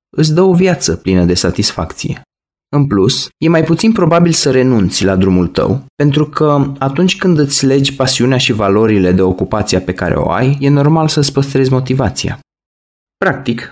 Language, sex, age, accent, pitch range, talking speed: Romanian, male, 20-39, native, 110-155 Hz, 170 wpm